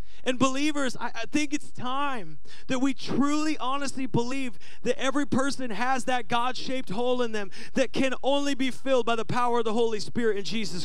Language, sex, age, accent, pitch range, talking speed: English, male, 30-49, American, 210-270 Hz, 195 wpm